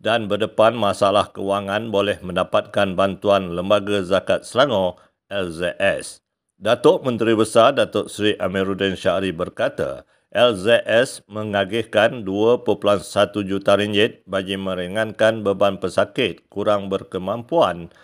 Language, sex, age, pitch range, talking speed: Malay, male, 50-69, 100-115 Hz, 100 wpm